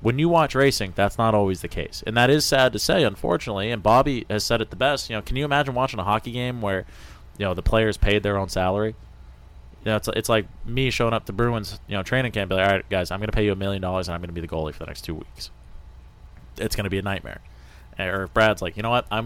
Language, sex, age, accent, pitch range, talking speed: English, male, 30-49, American, 90-115 Hz, 285 wpm